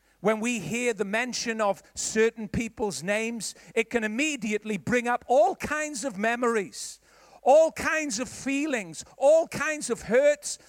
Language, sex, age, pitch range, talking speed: English, male, 50-69, 225-275 Hz, 145 wpm